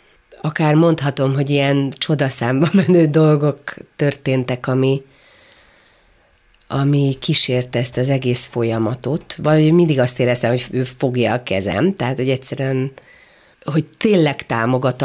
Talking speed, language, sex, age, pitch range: 115 wpm, Hungarian, female, 40-59, 130-160 Hz